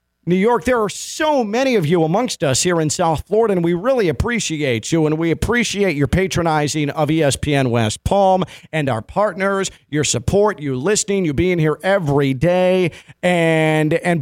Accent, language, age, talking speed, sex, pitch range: American, English, 40-59, 175 wpm, male, 150-195 Hz